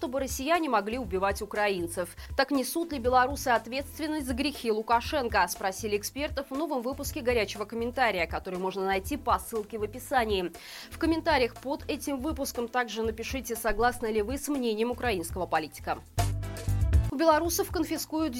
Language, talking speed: Russian, 145 wpm